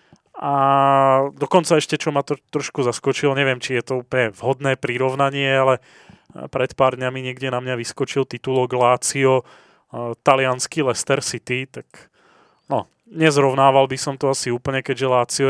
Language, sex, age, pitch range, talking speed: Slovak, male, 30-49, 125-145 Hz, 145 wpm